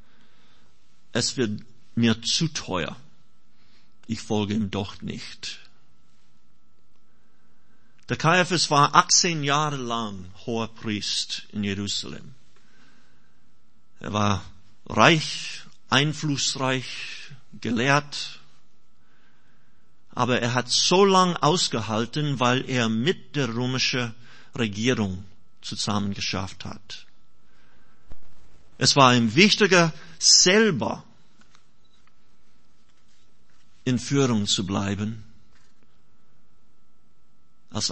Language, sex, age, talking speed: German, male, 50-69, 80 wpm